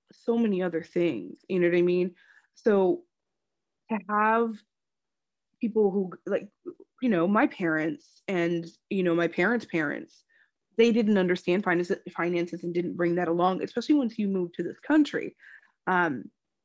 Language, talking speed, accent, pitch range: English, 150 wpm, American, 175-210 Hz